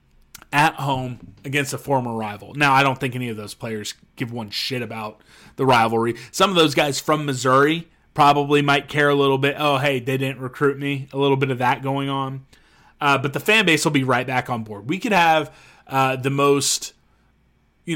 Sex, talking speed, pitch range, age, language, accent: male, 210 wpm, 135-170 Hz, 30-49, English, American